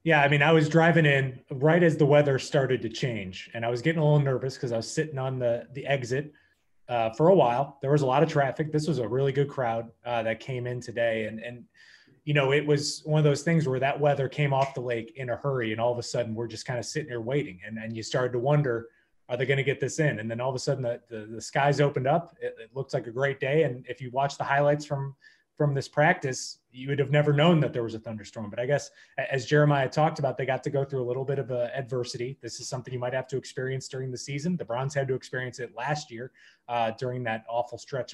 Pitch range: 120-145 Hz